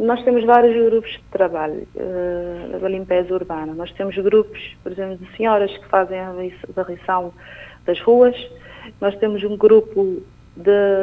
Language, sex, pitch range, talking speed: Portuguese, female, 180-205 Hz, 150 wpm